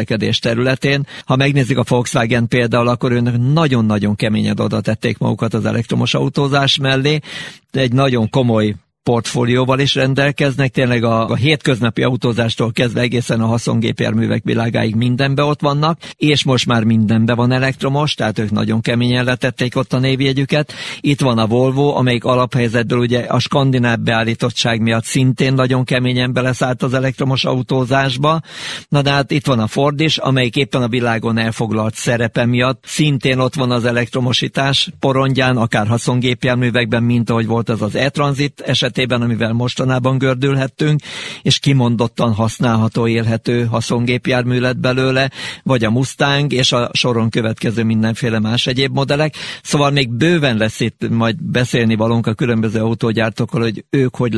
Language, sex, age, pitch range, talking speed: Hungarian, male, 50-69, 115-135 Hz, 145 wpm